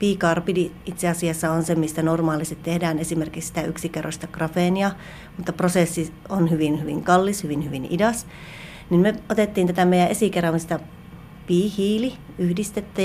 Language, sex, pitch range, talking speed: Finnish, female, 165-195 Hz, 130 wpm